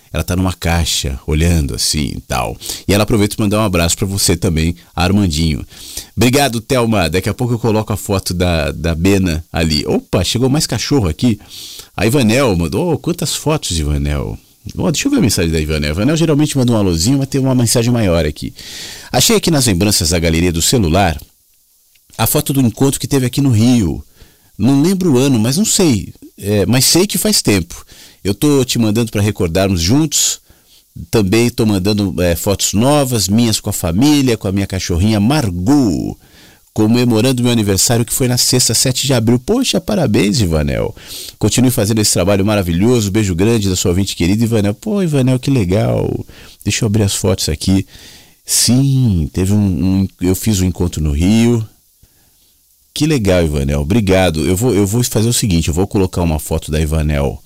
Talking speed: 190 wpm